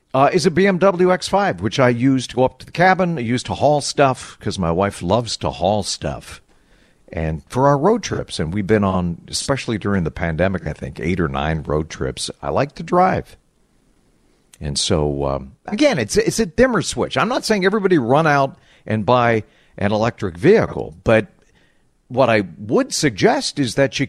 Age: 50-69